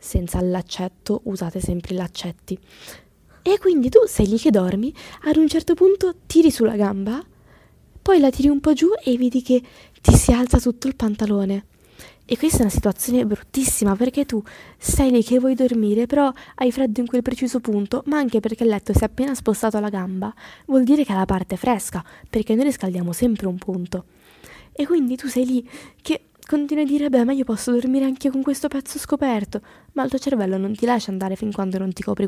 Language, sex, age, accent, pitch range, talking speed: Italian, female, 20-39, native, 200-260 Hz, 210 wpm